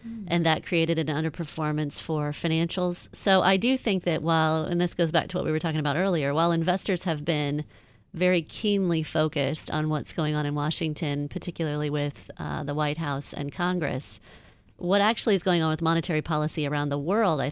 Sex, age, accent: female, 40-59, American